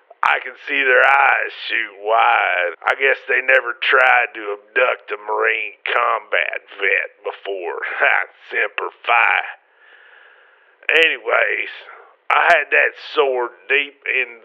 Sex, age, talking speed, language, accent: male, 40-59, 120 wpm, English, American